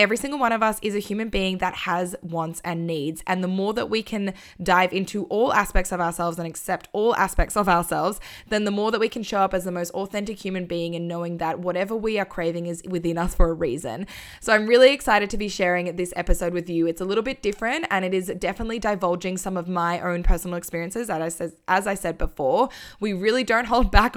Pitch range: 175-220 Hz